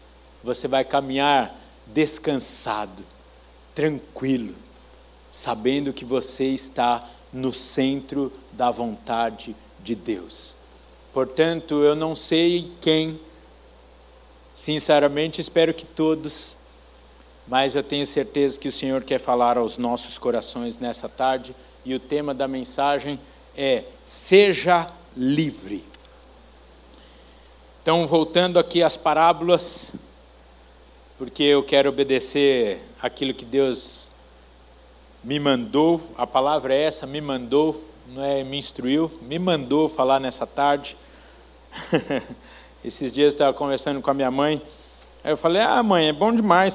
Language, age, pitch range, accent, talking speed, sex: Portuguese, 60-79, 125-165 Hz, Brazilian, 115 wpm, male